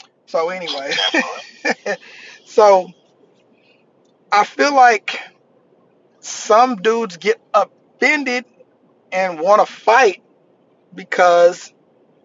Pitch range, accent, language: 190-265 Hz, American, English